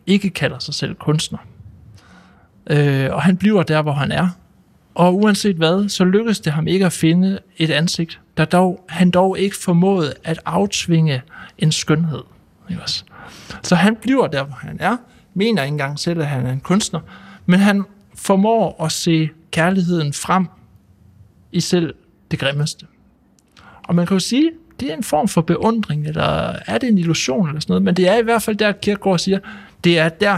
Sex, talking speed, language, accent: male, 185 wpm, Danish, native